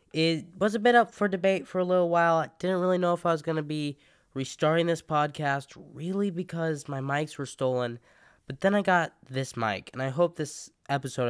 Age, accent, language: 10-29, American, English